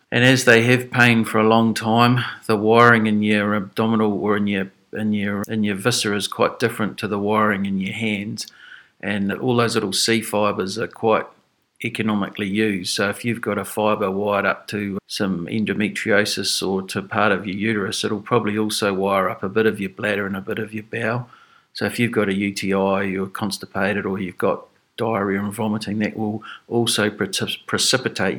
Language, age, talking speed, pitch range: English, 50-69, 200 wpm, 100-120 Hz